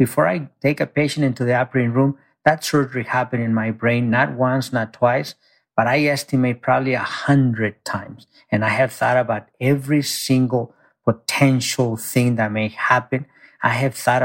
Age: 50-69